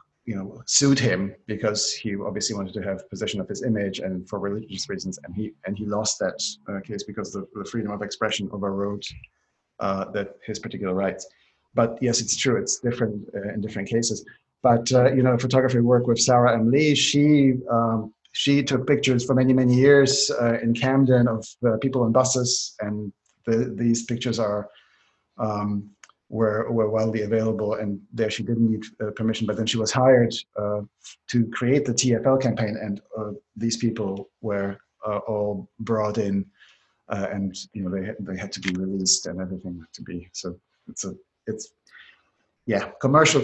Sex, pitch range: male, 105-125 Hz